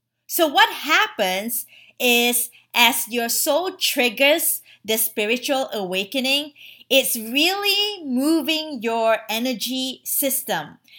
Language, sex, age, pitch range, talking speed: English, female, 20-39, 220-295 Hz, 95 wpm